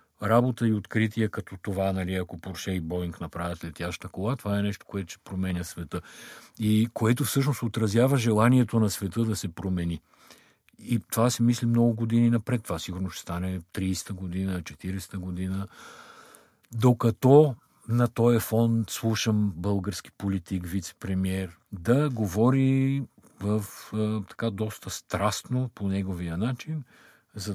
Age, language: 50-69, Bulgarian